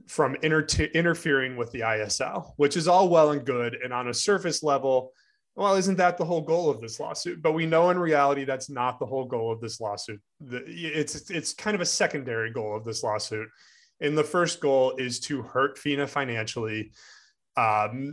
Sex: male